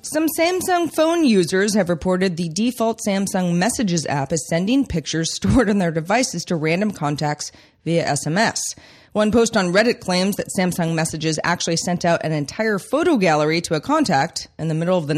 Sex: female